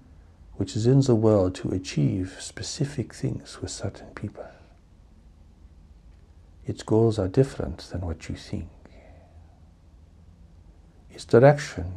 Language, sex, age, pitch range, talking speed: English, male, 60-79, 80-105 Hz, 110 wpm